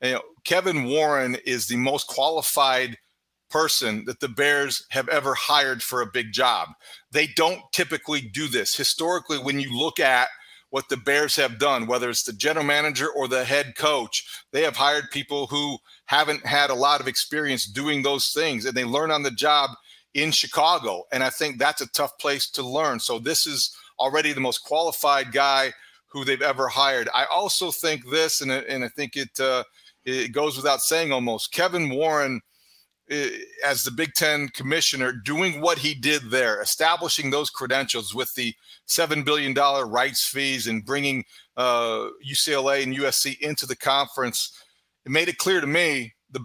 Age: 40-59